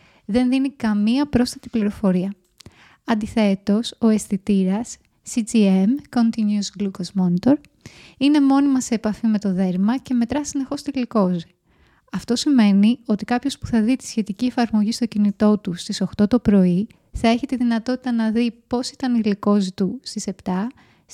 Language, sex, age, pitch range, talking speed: Greek, female, 20-39, 200-250 Hz, 155 wpm